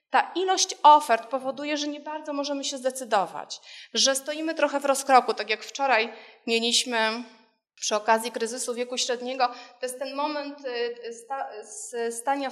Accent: native